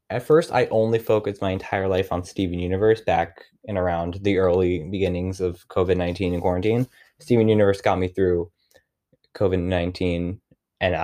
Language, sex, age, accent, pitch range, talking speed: English, male, 20-39, American, 95-125 Hz, 150 wpm